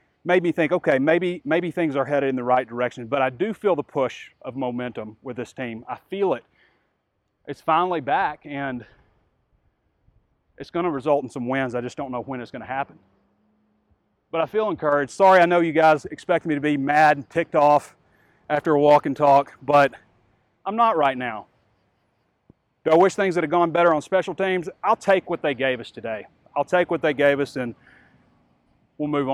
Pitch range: 130-175 Hz